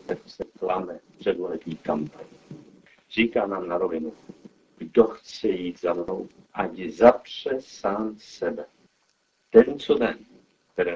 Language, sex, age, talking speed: Czech, male, 60-79, 115 wpm